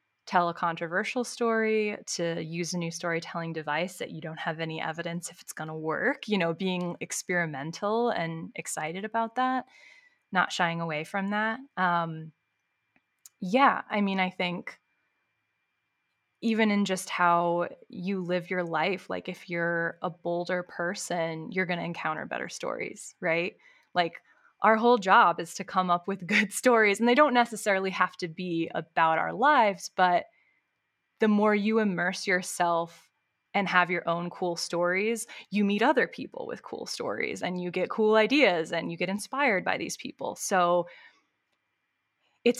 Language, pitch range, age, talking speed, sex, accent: English, 170-220 Hz, 20-39, 160 wpm, female, American